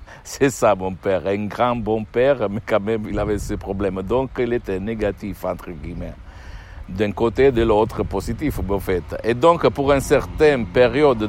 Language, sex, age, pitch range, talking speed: Italian, male, 60-79, 100-125 Hz, 185 wpm